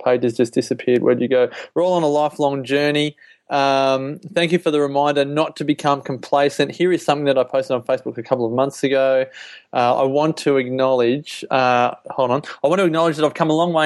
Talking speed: 230 wpm